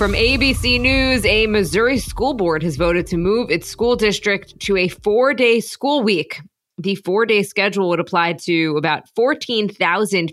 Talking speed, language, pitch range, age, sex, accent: 155 wpm, English, 170-215 Hz, 20-39, female, American